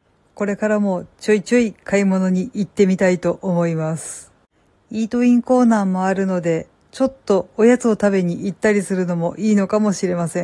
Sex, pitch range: female, 185-220 Hz